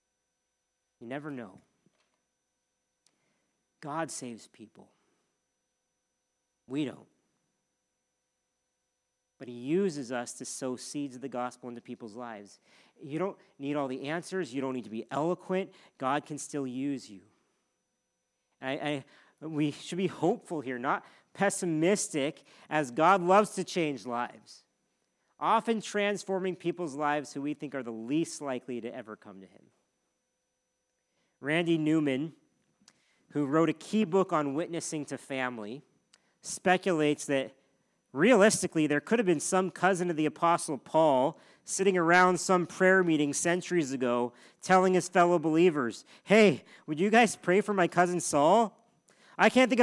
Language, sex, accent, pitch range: English, male, American, 135-200 Hz